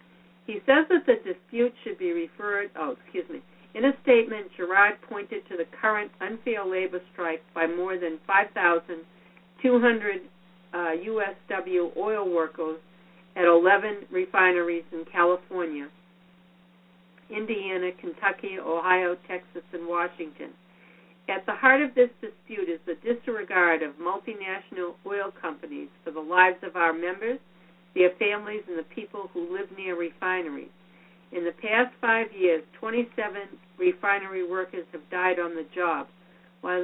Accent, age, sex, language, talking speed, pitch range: American, 60-79, female, English, 135 wpm, 175-210 Hz